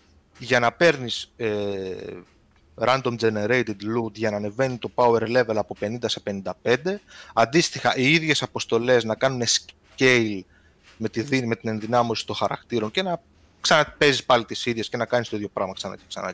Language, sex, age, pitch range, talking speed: Greek, male, 20-39, 110-145 Hz, 170 wpm